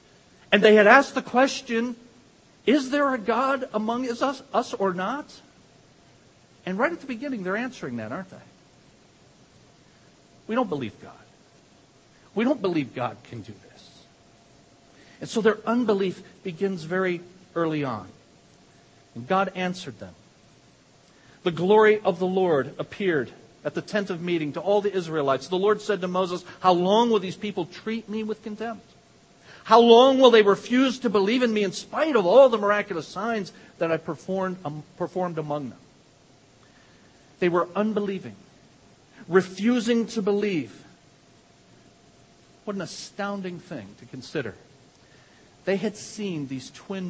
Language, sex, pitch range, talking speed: English, male, 160-220 Hz, 150 wpm